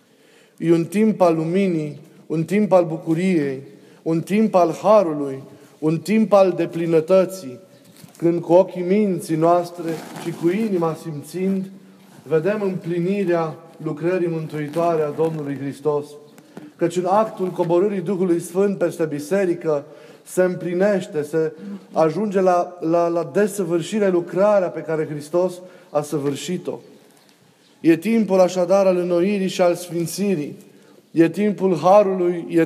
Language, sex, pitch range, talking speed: Romanian, male, 160-195 Hz, 125 wpm